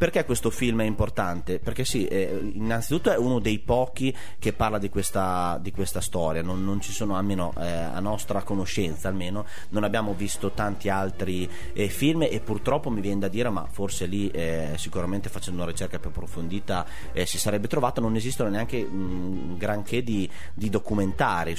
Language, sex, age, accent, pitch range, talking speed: Italian, male, 30-49, native, 95-110 Hz, 180 wpm